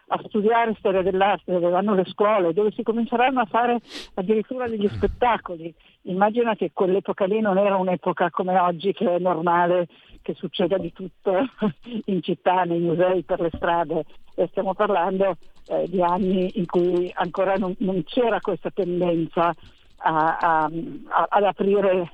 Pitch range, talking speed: 175-205 Hz, 155 wpm